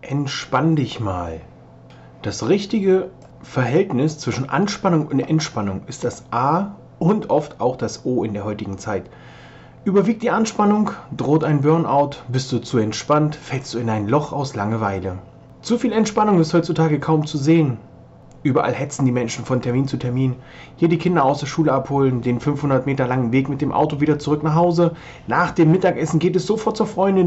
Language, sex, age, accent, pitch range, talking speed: German, male, 30-49, German, 125-170 Hz, 180 wpm